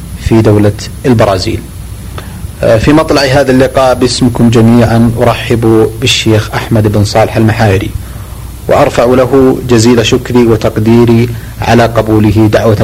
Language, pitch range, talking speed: Arabic, 105-120 Hz, 105 wpm